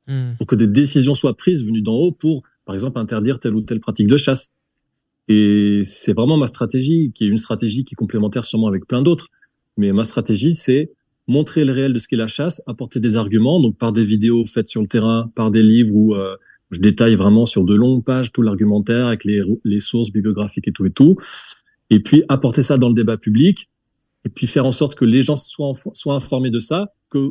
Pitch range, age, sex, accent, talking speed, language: 110-135 Hz, 20-39, male, French, 225 wpm, French